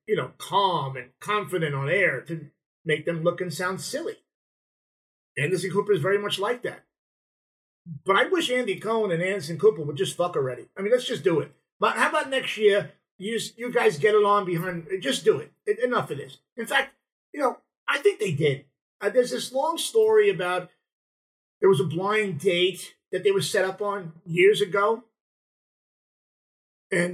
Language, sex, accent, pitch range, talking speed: English, male, American, 175-245 Hz, 190 wpm